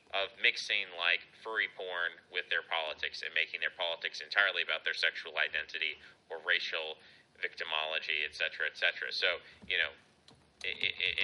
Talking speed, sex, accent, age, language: 140 wpm, male, American, 30-49, English